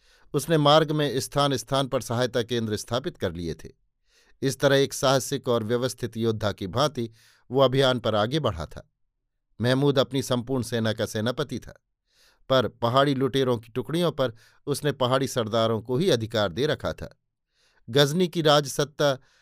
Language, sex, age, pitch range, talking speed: Hindi, male, 50-69, 115-145 Hz, 160 wpm